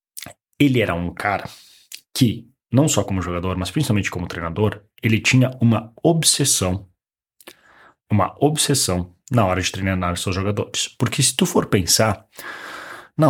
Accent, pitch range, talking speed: Brazilian, 95-125 Hz, 145 wpm